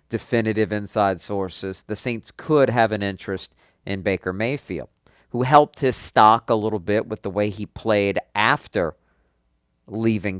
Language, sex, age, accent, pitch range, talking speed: English, male, 50-69, American, 85-110 Hz, 150 wpm